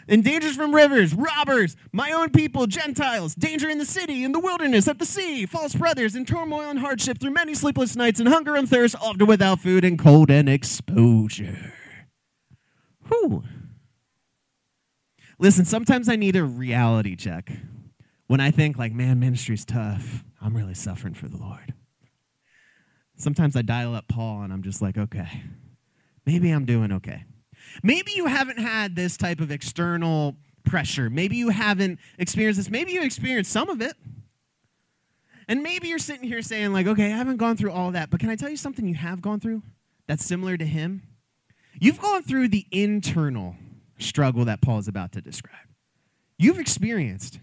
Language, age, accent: English, 20-39, American